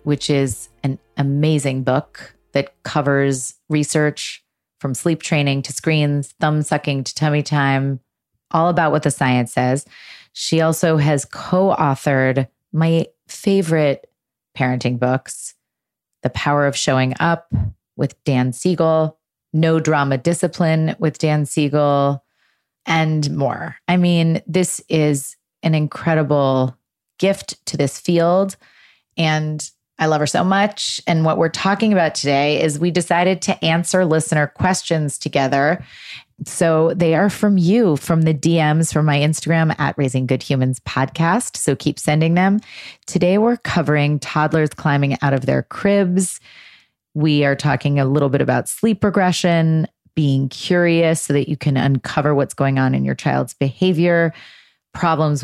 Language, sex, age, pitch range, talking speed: English, female, 30-49, 140-165 Hz, 140 wpm